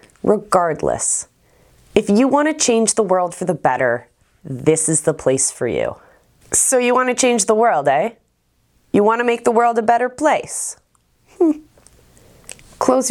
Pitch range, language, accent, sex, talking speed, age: 160-230 Hz, English, American, female, 160 wpm, 20-39